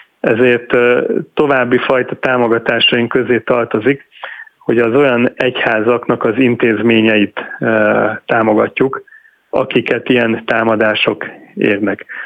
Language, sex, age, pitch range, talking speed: Hungarian, male, 30-49, 115-125 Hz, 90 wpm